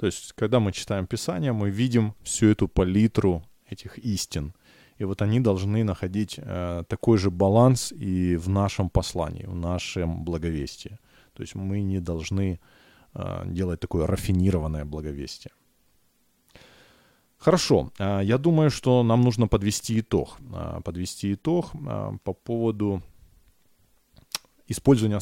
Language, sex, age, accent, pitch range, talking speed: Ukrainian, male, 20-39, native, 95-125 Hz, 120 wpm